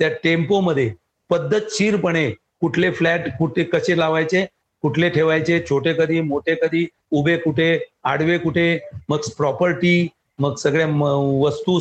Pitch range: 155-180 Hz